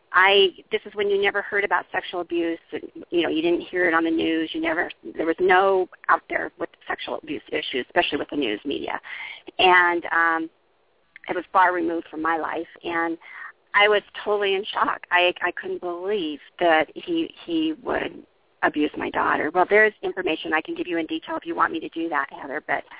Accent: American